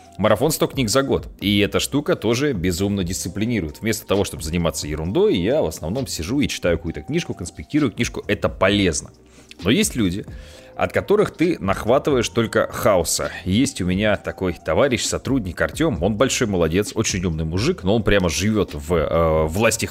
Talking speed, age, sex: 175 wpm, 30-49, male